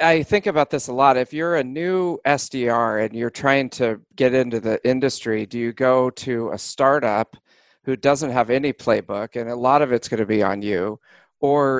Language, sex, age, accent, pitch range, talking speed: English, male, 40-59, American, 115-140 Hz, 210 wpm